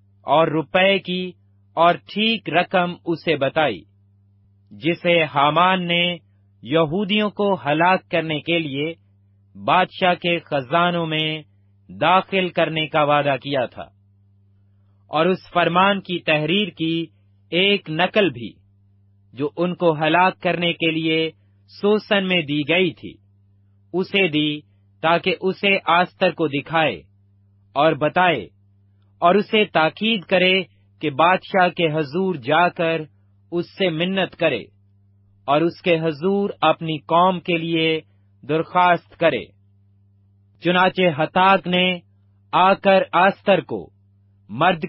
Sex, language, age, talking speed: male, Urdu, 40-59, 120 wpm